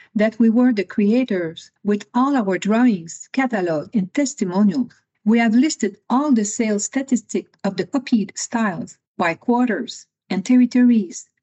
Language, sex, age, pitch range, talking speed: English, female, 50-69, 185-230 Hz, 140 wpm